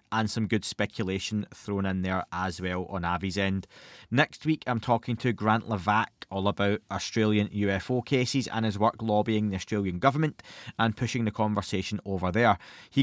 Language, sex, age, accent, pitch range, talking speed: English, male, 20-39, British, 100-120 Hz, 175 wpm